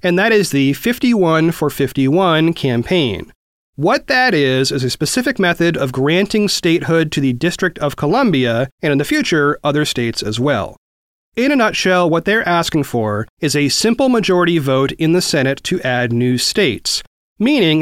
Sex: male